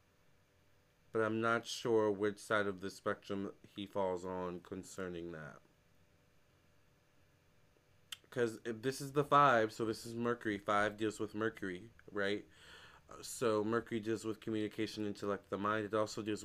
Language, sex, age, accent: English, male, 20-39, American